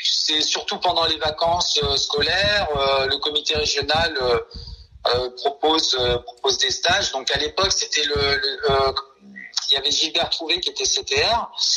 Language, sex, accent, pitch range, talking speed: French, male, French, 135-195 Hz, 140 wpm